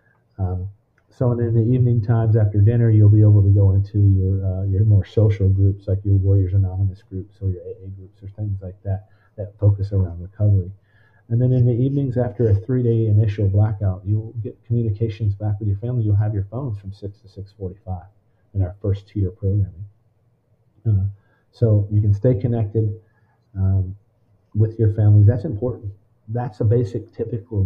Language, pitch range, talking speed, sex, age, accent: English, 100-115 Hz, 180 wpm, male, 40-59, American